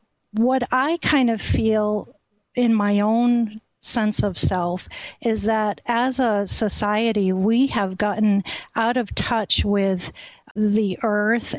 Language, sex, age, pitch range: English, female, 50-69, 195-225 Hz